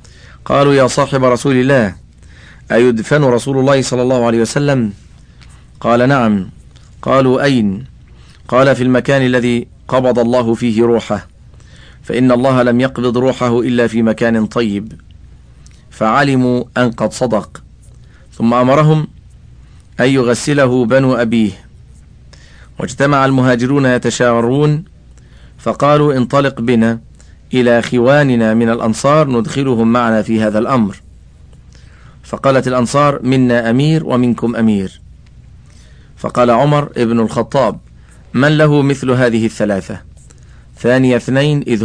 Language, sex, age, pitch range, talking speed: Arabic, male, 40-59, 110-130 Hz, 110 wpm